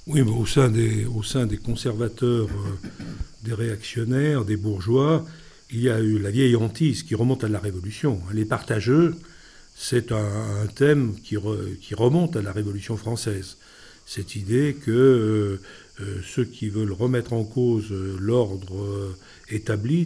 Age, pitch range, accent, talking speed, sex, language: 50-69, 105-130 Hz, French, 150 wpm, male, French